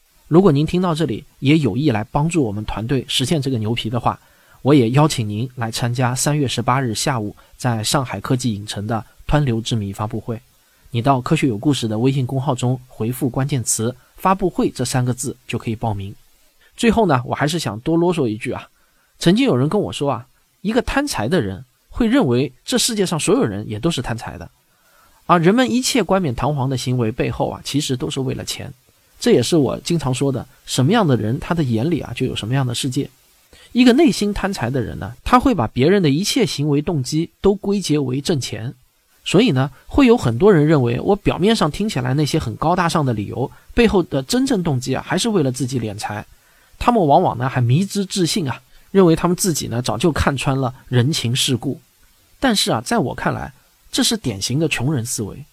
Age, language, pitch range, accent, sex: 20-39, Chinese, 120-170 Hz, native, male